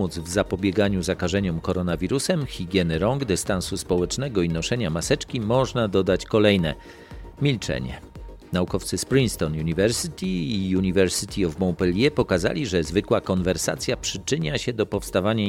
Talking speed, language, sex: 120 wpm, Polish, male